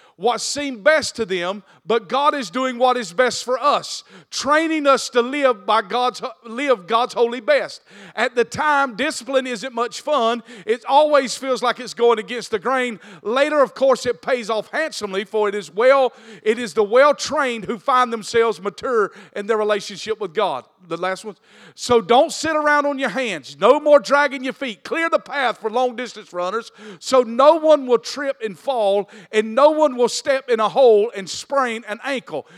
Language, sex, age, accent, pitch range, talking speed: English, male, 50-69, American, 220-275 Hz, 190 wpm